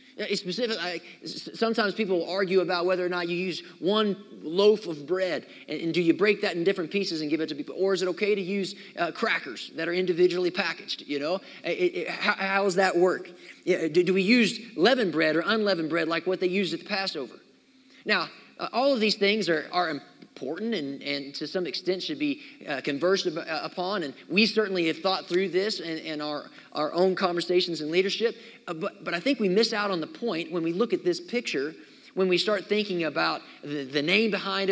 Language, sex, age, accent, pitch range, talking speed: English, male, 30-49, American, 170-225 Hz, 220 wpm